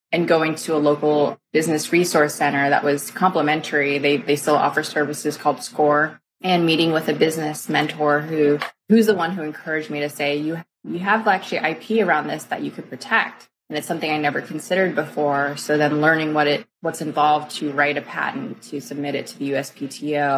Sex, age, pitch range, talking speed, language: female, 20-39, 145-160 Hz, 200 wpm, English